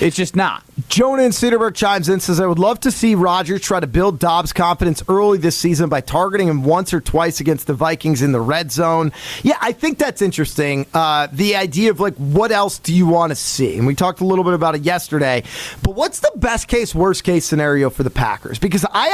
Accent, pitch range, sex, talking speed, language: American, 170-230 Hz, male, 225 wpm, English